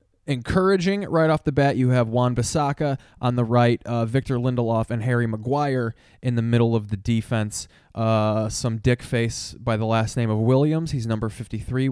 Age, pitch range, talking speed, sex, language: 20-39, 110-140 Hz, 180 wpm, male, English